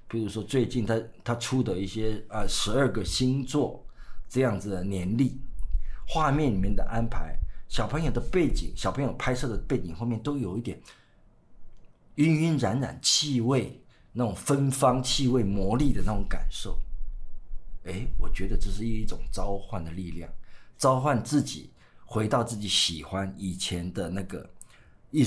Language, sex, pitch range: Chinese, male, 95-130 Hz